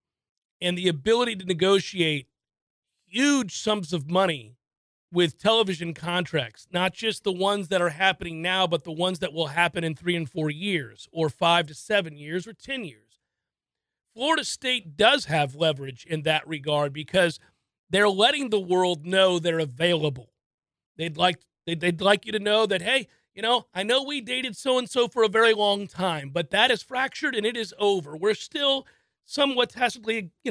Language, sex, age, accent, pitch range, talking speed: English, male, 40-59, American, 170-225 Hz, 175 wpm